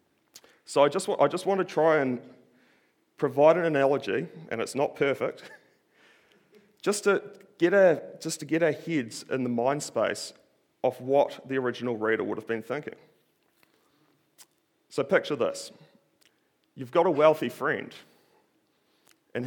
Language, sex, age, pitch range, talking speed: English, male, 30-49, 135-185 Hz, 150 wpm